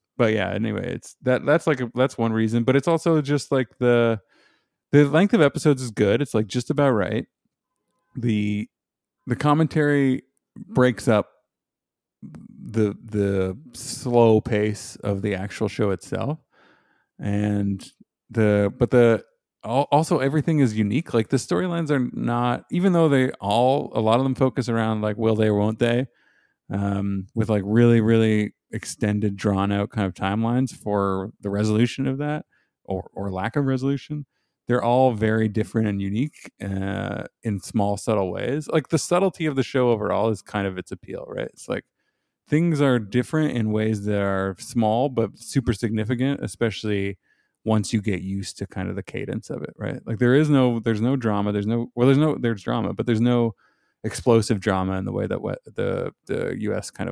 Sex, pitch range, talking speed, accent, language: male, 105-130 Hz, 180 wpm, American, English